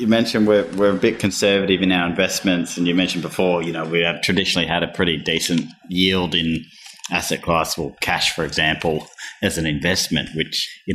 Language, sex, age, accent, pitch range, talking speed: English, male, 30-49, Australian, 90-110 Hz, 195 wpm